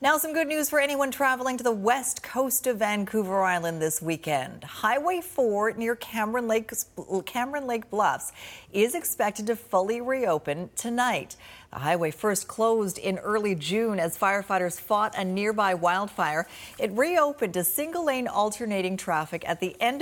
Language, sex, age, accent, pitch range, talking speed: English, female, 40-59, American, 180-240 Hz, 160 wpm